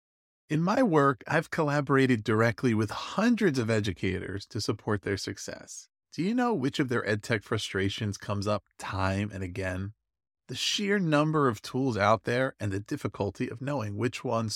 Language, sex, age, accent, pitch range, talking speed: English, male, 30-49, American, 105-150 Hz, 175 wpm